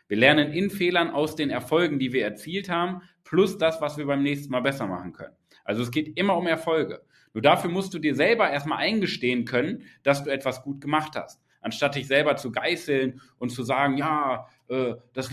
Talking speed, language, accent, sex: 210 wpm, German, German, male